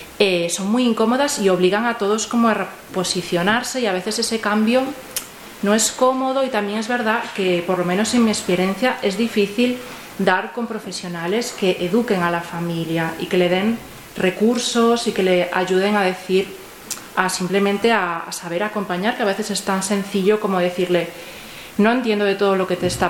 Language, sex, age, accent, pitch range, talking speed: Spanish, female, 30-49, Spanish, 180-215 Hz, 190 wpm